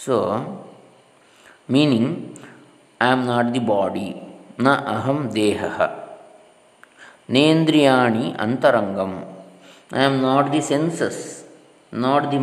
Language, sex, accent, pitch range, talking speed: English, male, Indian, 105-135 Hz, 90 wpm